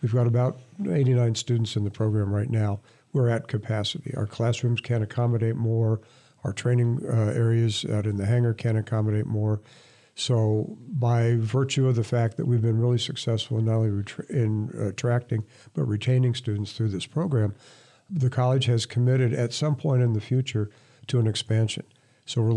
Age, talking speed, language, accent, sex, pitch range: 60-79, 175 wpm, English, American, male, 110-125 Hz